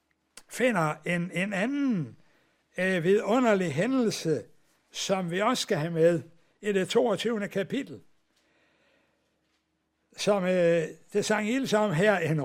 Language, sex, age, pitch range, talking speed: Danish, male, 60-79, 170-235 Hz, 120 wpm